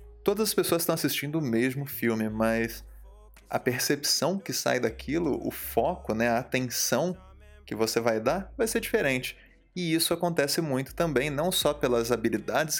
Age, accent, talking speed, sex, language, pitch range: 20-39, Brazilian, 165 wpm, male, English, 115-170 Hz